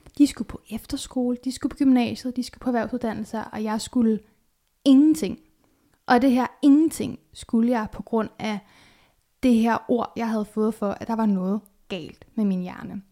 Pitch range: 205-250 Hz